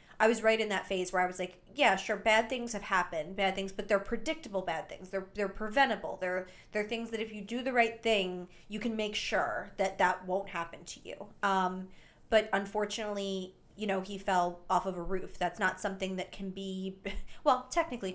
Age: 20-39